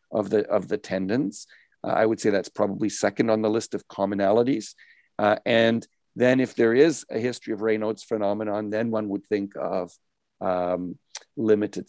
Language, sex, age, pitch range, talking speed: English, male, 50-69, 105-125 Hz, 170 wpm